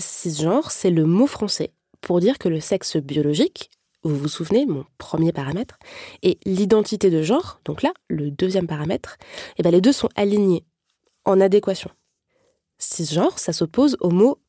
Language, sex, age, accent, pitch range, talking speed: French, female, 20-39, French, 170-230 Hz, 160 wpm